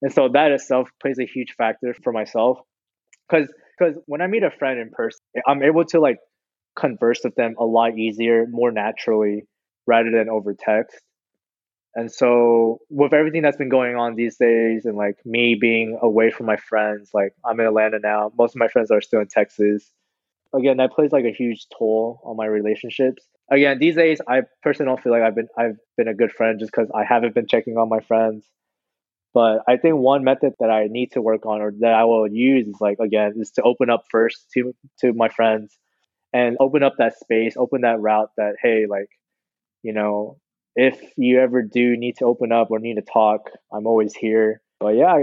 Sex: male